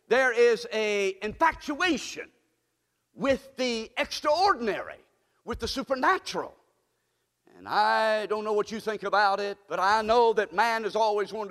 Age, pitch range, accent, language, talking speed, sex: 50-69, 165-275 Hz, American, English, 140 wpm, male